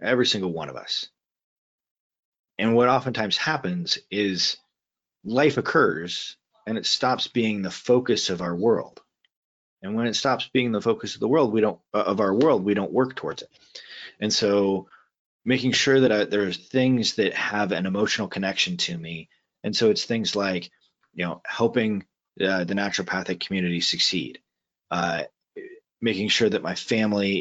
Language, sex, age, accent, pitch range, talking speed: English, male, 30-49, American, 95-125 Hz, 165 wpm